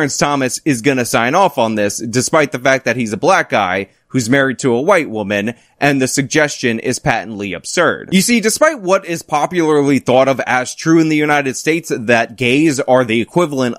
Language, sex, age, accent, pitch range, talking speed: English, male, 20-39, American, 115-155 Hz, 200 wpm